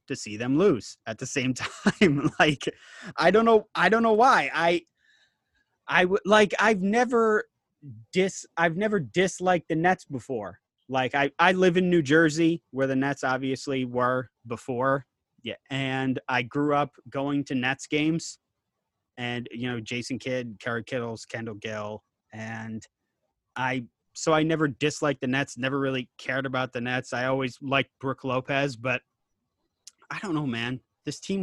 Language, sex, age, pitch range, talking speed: English, male, 30-49, 125-160 Hz, 165 wpm